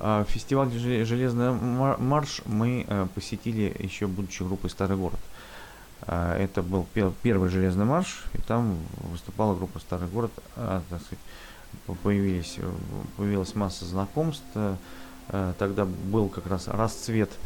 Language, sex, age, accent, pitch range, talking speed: Russian, male, 30-49, native, 90-110 Hz, 110 wpm